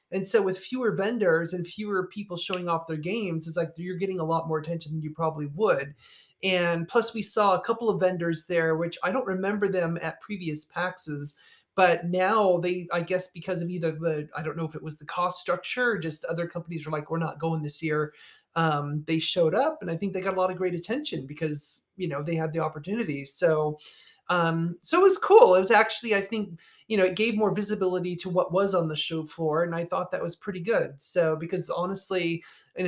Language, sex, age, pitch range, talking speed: English, male, 30-49, 160-190 Hz, 230 wpm